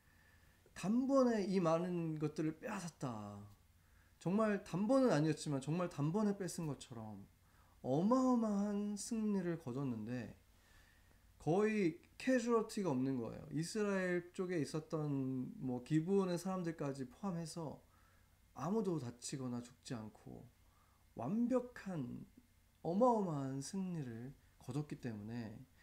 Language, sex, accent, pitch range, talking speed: English, male, Korean, 110-180 Hz, 80 wpm